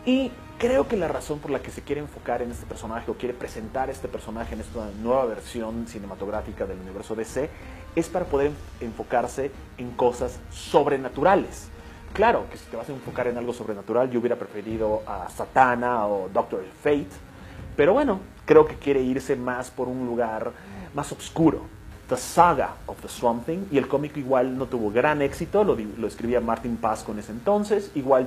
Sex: male